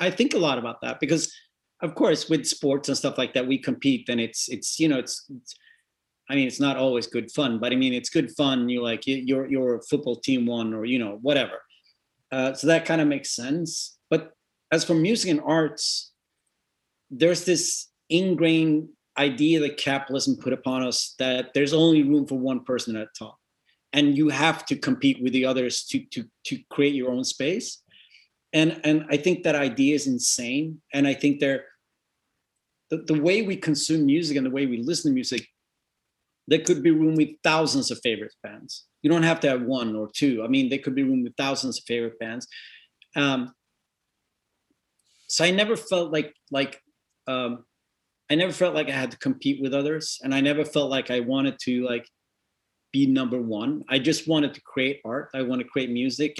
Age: 30-49